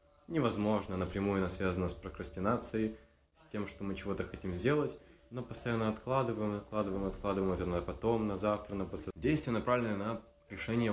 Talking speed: 160 wpm